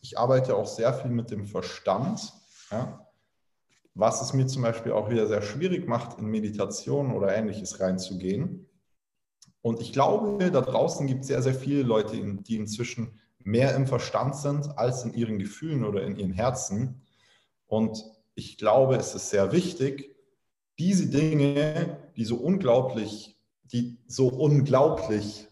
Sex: male